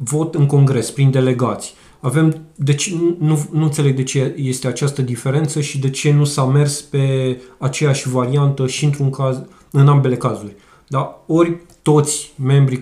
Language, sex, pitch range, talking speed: Romanian, male, 135-160 Hz, 155 wpm